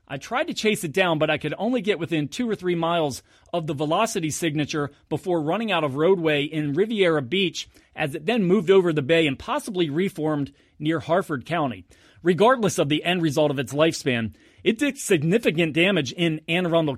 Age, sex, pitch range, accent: 30-49, male, 145-190 Hz, American